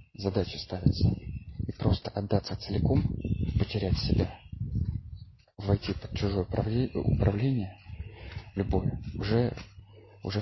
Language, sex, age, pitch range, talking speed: English, male, 30-49, 95-110 Hz, 85 wpm